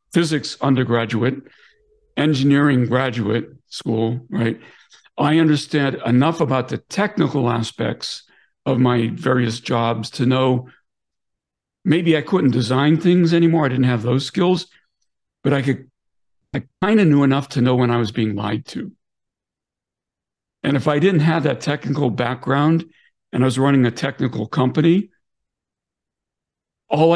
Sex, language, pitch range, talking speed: male, English, 120-150 Hz, 135 wpm